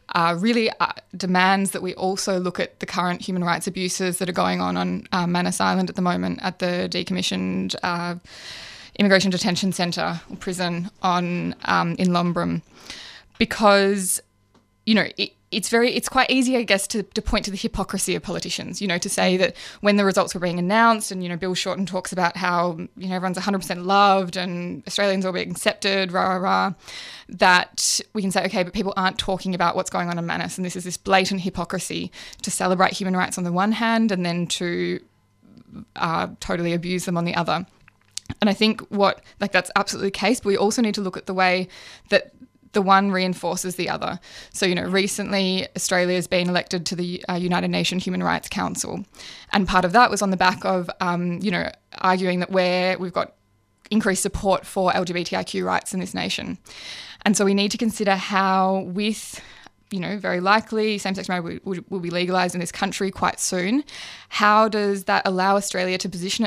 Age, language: 20-39, English